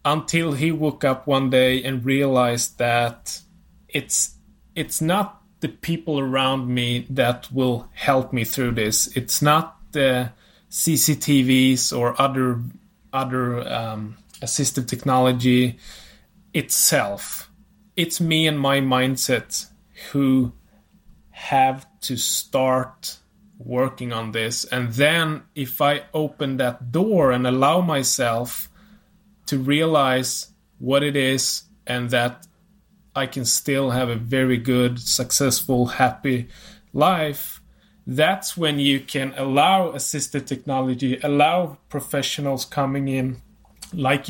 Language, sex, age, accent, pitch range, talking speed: English, male, 20-39, Norwegian, 125-150 Hz, 115 wpm